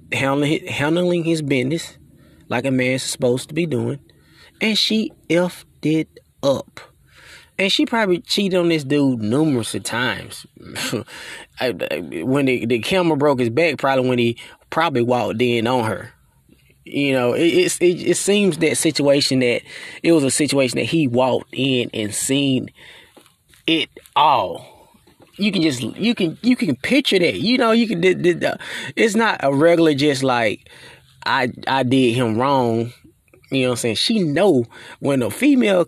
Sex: male